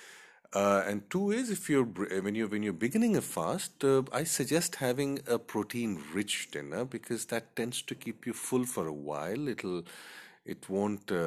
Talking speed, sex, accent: 180 wpm, male, Indian